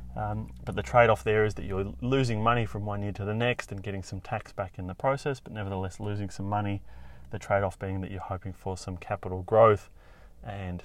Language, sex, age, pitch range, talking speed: English, male, 30-49, 90-105 Hz, 220 wpm